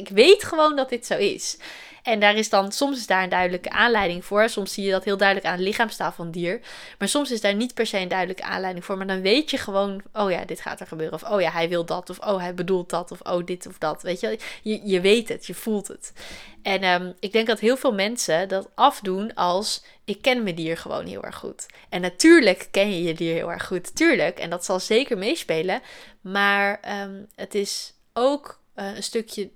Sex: female